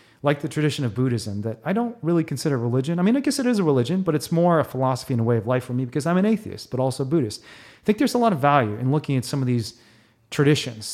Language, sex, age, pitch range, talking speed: English, male, 30-49, 120-155 Hz, 285 wpm